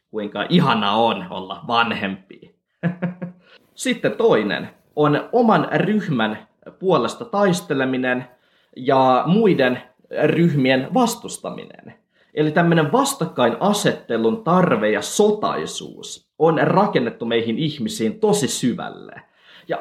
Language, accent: Finnish, native